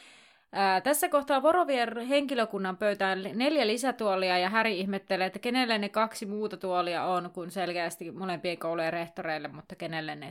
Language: Finnish